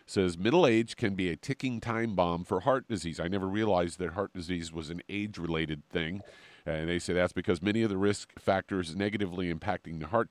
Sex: male